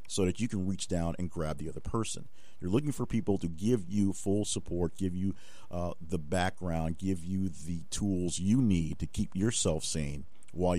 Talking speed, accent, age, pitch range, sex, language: 200 wpm, American, 50-69, 80-100 Hz, male, English